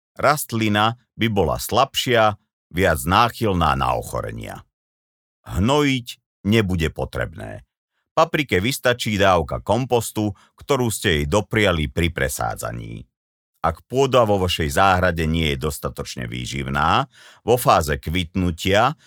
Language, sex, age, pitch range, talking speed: Slovak, male, 50-69, 80-115 Hz, 105 wpm